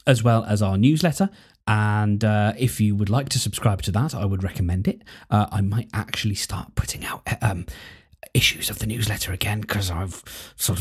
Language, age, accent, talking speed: English, 20-39, British, 195 wpm